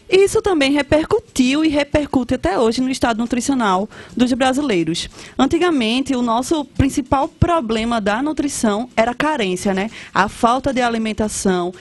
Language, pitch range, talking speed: Portuguese, 220-285 Hz, 135 wpm